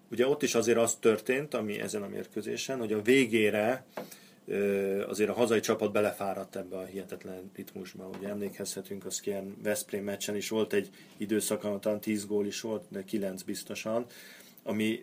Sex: male